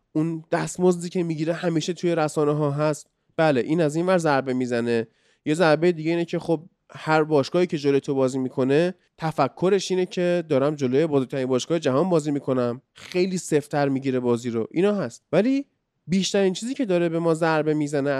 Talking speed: 190 wpm